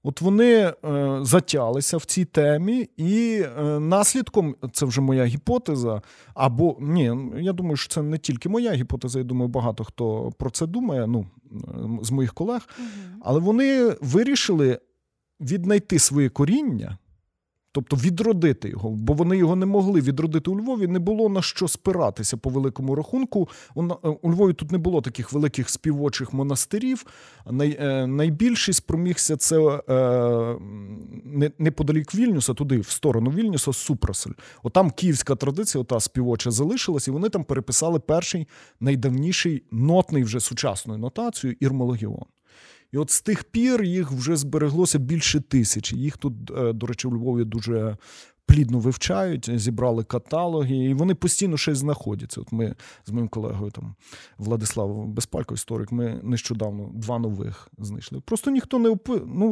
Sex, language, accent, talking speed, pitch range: male, Ukrainian, native, 140 wpm, 120-175 Hz